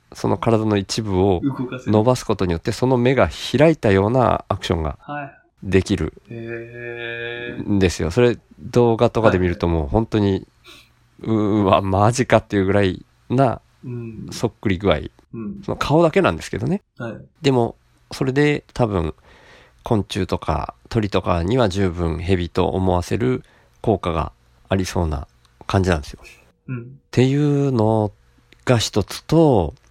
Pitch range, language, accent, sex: 90-125 Hz, Japanese, native, male